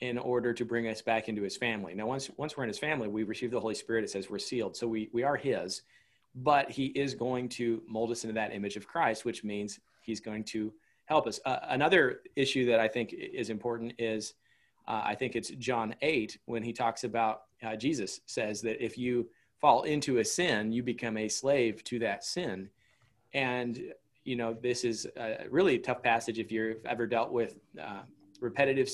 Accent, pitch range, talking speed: American, 110-125 Hz, 210 wpm